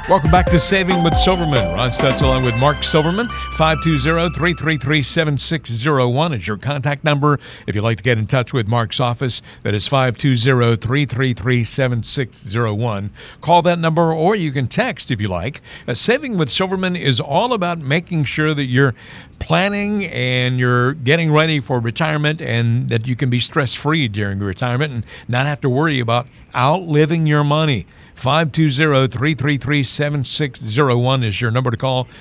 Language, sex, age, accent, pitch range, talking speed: English, male, 50-69, American, 125-155 Hz, 150 wpm